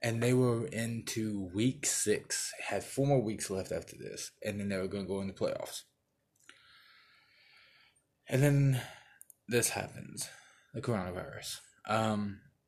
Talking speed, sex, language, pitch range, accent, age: 140 wpm, male, English, 100-125 Hz, American, 20-39